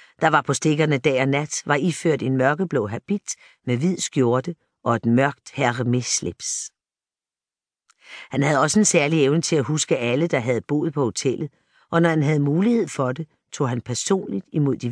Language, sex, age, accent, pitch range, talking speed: Danish, female, 50-69, native, 130-165 Hz, 195 wpm